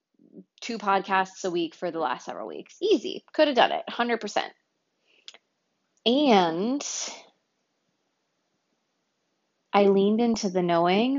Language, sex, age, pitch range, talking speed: English, female, 20-39, 175-240 Hz, 115 wpm